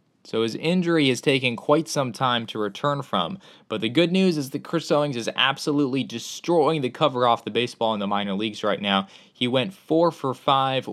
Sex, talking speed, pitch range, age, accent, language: male, 210 wpm, 105-135 Hz, 20-39, American, English